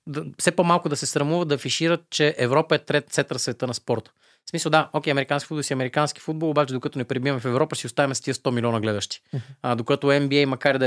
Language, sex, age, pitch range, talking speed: Bulgarian, male, 20-39, 120-145 Hz, 245 wpm